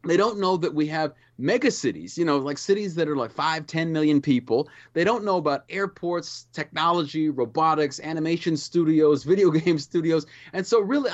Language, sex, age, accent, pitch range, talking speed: English, male, 30-49, American, 140-195 Hz, 180 wpm